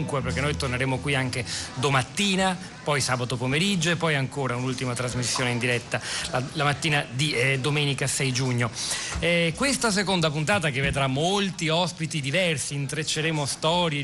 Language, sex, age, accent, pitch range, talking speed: Italian, male, 40-59, native, 130-160 Hz, 150 wpm